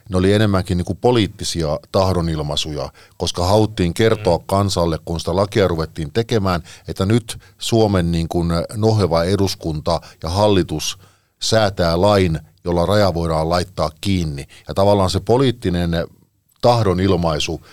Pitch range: 85-105 Hz